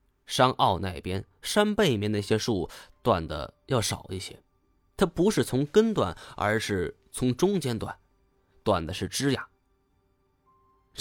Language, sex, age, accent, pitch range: Chinese, male, 20-39, native, 95-135 Hz